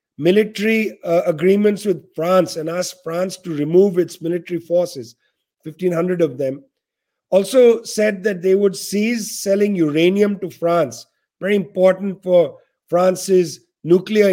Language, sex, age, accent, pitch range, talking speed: English, male, 50-69, Indian, 170-210 Hz, 130 wpm